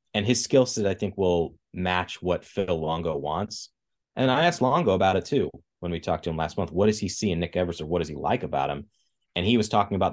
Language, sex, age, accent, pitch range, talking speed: English, male, 30-49, American, 85-105 Hz, 265 wpm